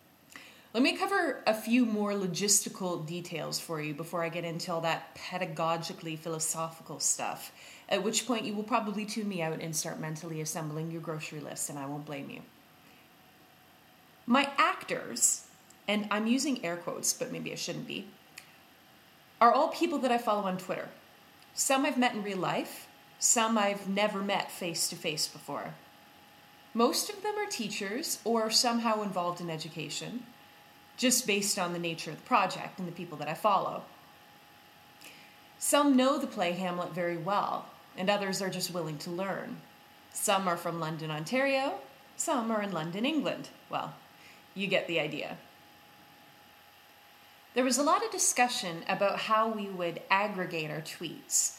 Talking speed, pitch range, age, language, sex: 160 wpm, 170-235 Hz, 30-49, English, female